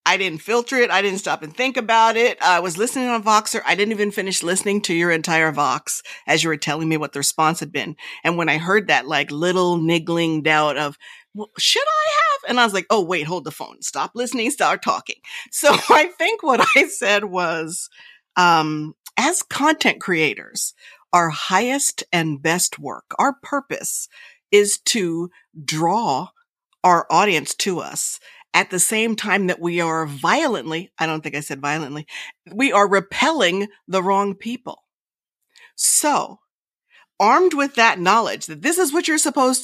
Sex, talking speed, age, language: female, 180 wpm, 50-69, English